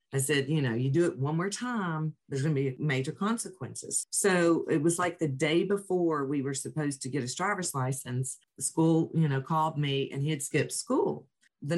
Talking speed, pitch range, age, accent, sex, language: 220 wpm, 140-185 Hz, 40-59, American, female, English